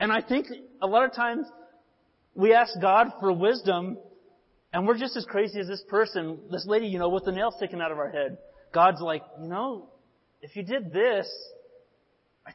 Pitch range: 175-220 Hz